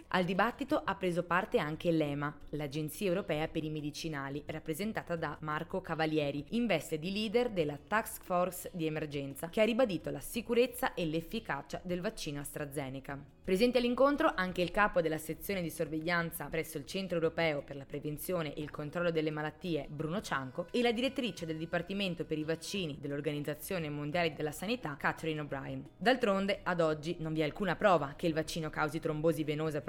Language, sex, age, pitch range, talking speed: Italian, female, 20-39, 155-185 Hz, 175 wpm